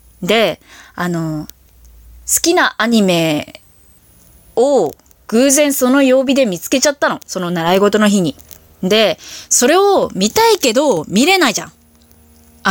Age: 20-39